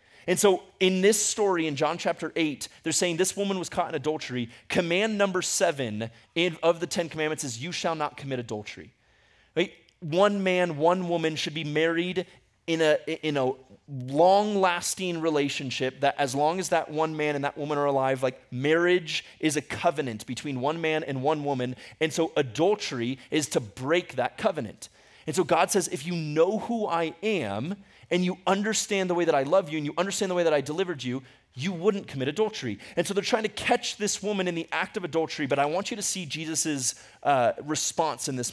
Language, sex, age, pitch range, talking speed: English, male, 30-49, 135-180 Hz, 200 wpm